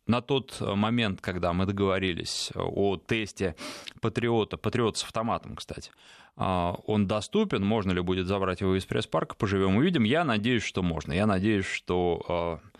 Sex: male